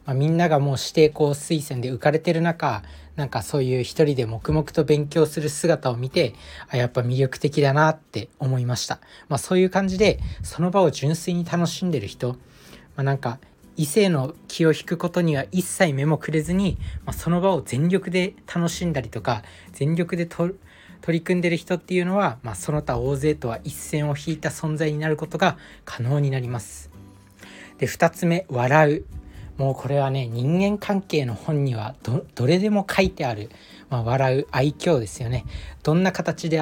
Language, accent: Japanese, native